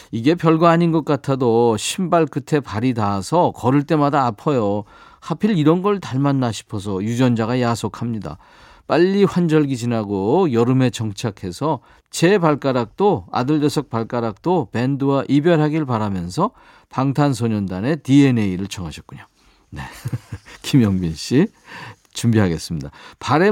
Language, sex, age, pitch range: Korean, male, 40-59, 115-160 Hz